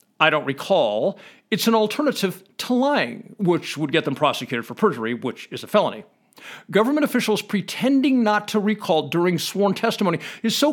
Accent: American